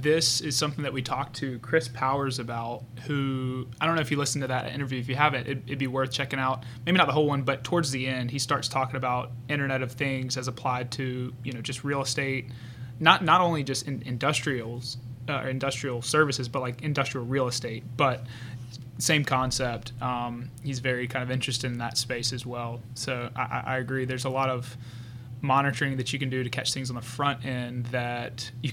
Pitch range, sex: 125-135 Hz, male